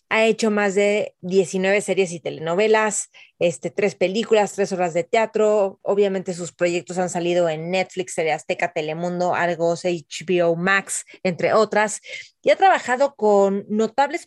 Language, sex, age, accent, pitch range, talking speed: Spanish, female, 30-49, Mexican, 180-215 Hz, 145 wpm